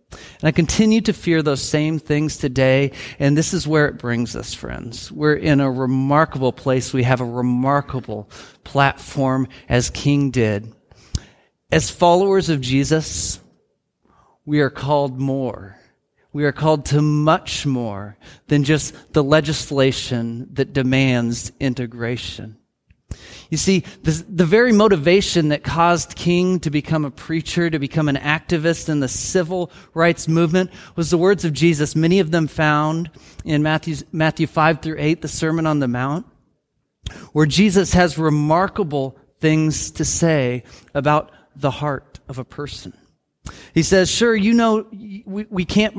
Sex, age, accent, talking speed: male, 40-59, American, 145 wpm